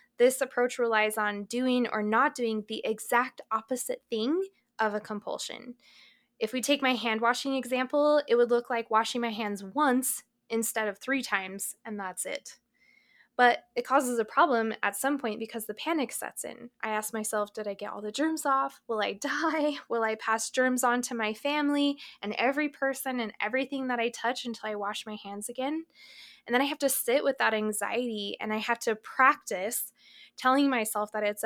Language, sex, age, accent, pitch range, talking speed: English, female, 10-29, American, 215-260 Hz, 195 wpm